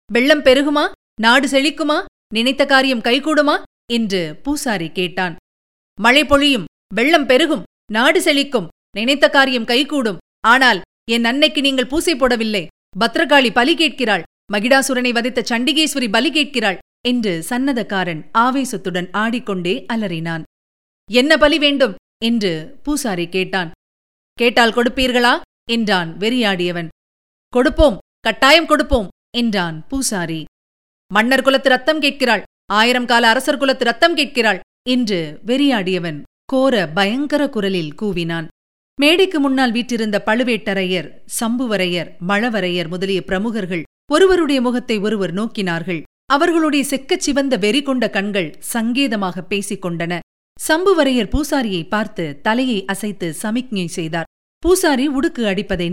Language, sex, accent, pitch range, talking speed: Tamil, female, native, 190-275 Hz, 110 wpm